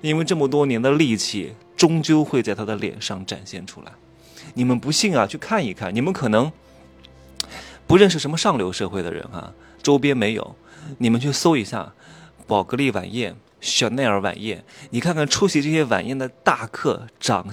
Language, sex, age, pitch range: Chinese, male, 20-39, 105-155 Hz